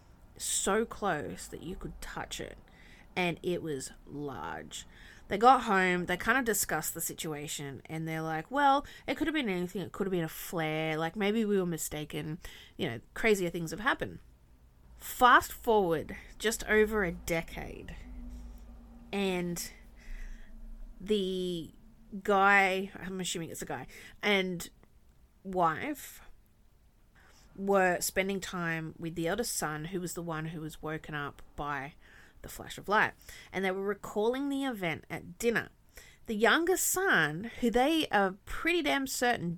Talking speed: 150 wpm